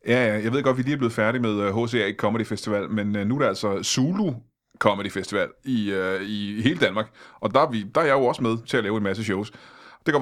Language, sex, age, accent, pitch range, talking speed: Danish, male, 30-49, native, 105-135 Hz, 265 wpm